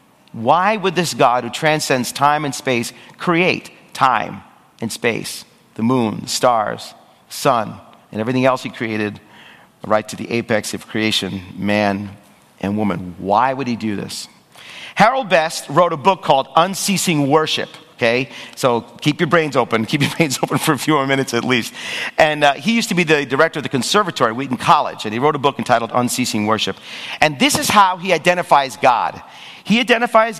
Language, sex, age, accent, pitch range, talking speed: English, male, 40-59, American, 120-165 Hz, 185 wpm